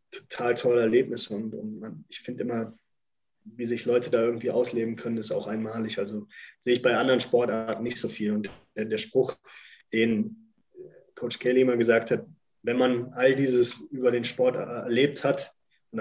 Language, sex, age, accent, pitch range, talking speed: German, male, 20-39, German, 115-125 Hz, 185 wpm